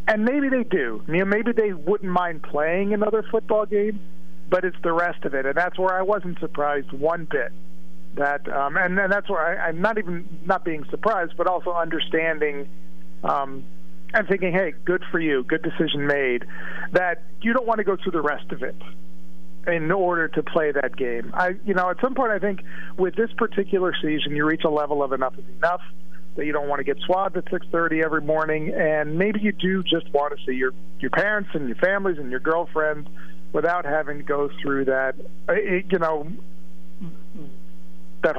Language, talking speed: English, 200 wpm